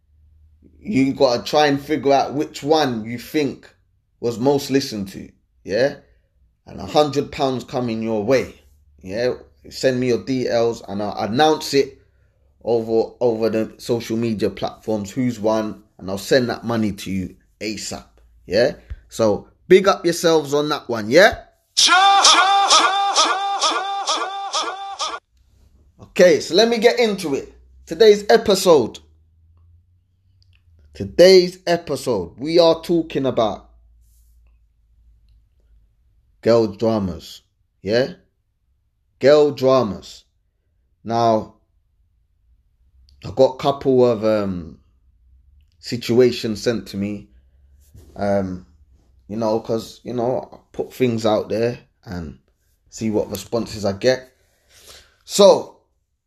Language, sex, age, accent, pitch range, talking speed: English, male, 20-39, British, 85-140 Hz, 110 wpm